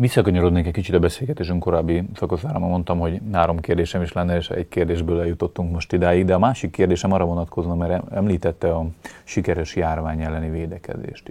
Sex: male